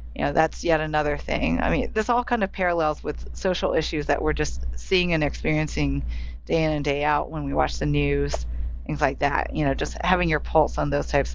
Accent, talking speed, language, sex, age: American, 235 wpm, English, female, 30-49